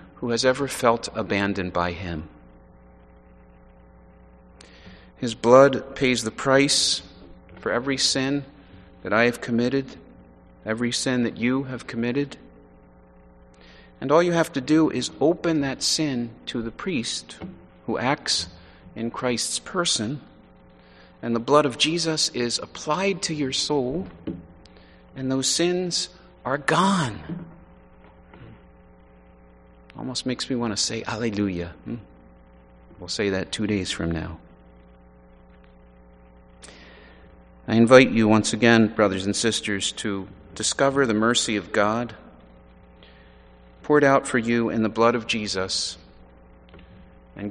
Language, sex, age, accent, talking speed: English, male, 40-59, American, 125 wpm